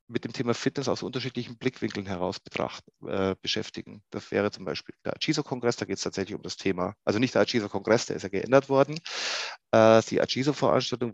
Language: German